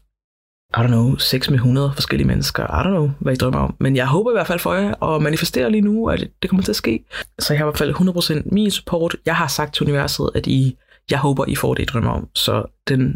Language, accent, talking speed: Danish, native, 260 wpm